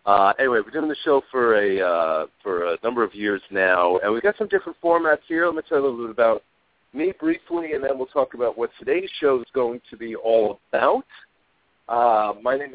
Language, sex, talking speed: English, male, 235 wpm